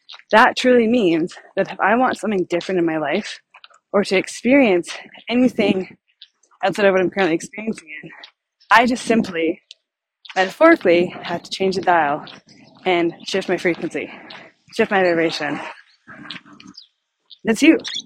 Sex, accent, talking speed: female, American, 130 wpm